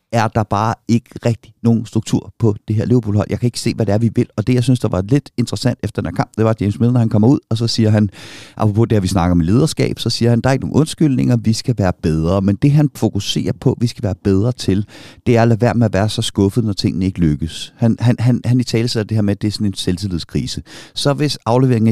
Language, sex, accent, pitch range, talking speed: Danish, male, native, 105-130 Hz, 285 wpm